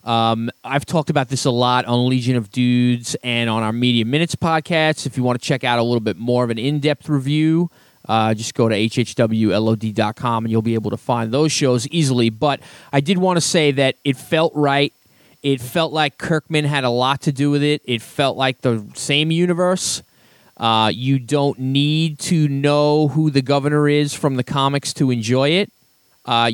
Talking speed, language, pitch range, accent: 200 wpm, English, 120-150 Hz, American